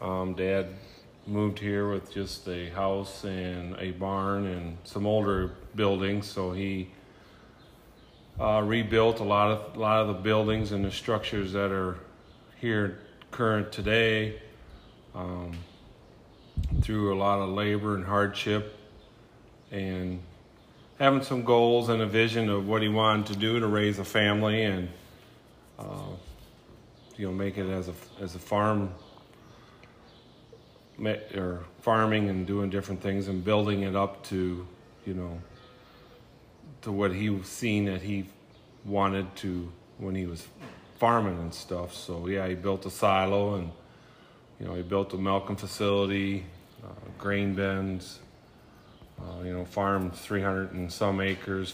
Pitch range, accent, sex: 95-110 Hz, American, male